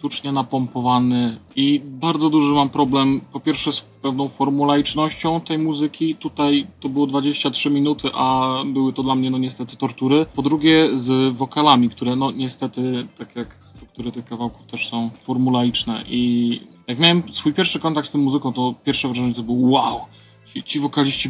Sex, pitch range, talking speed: male, 125-145 Hz, 170 wpm